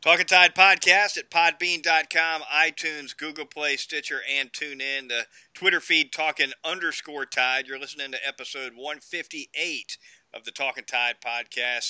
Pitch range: 135-160 Hz